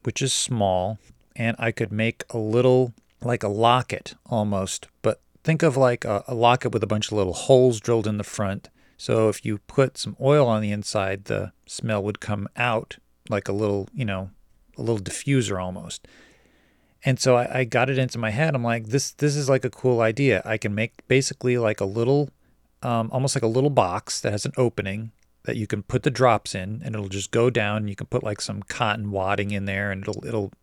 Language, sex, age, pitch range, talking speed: English, male, 40-59, 105-125 Hz, 220 wpm